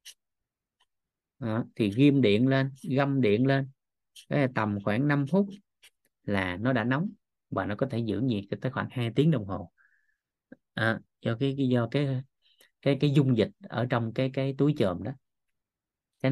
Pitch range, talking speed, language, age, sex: 110-140 Hz, 170 wpm, Vietnamese, 20-39, male